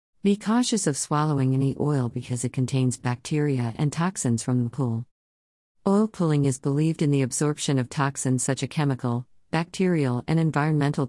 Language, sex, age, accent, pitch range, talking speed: English, female, 50-69, American, 125-150 Hz, 160 wpm